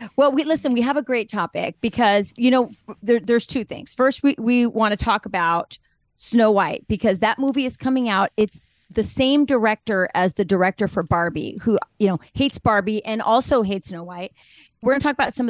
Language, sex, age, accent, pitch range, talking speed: English, female, 30-49, American, 185-225 Hz, 215 wpm